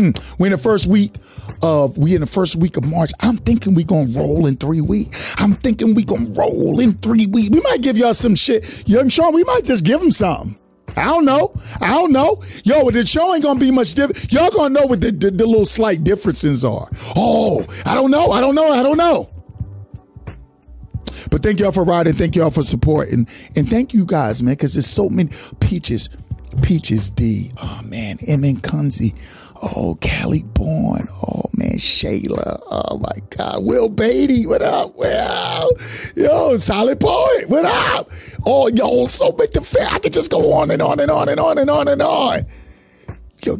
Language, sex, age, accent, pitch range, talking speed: English, male, 50-69, American, 145-240 Hz, 200 wpm